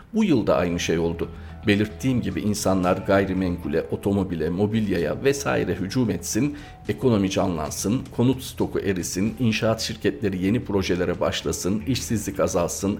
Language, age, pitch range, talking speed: Turkish, 50-69, 90-115 Hz, 120 wpm